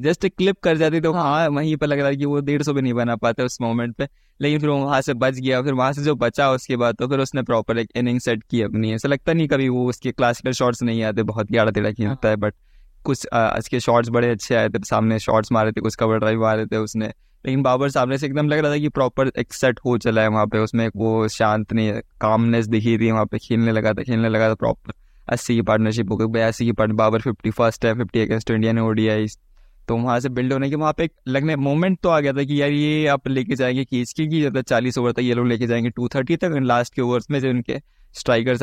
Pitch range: 115-145 Hz